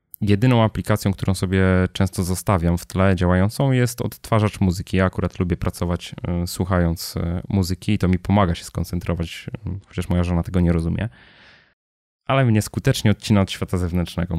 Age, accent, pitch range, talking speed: 20-39, native, 90-105 Hz, 155 wpm